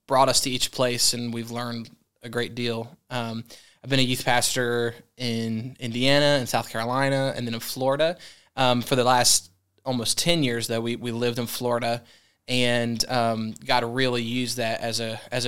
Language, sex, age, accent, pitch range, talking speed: English, male, 20-39, American, 115-125 Hz, 195 wpm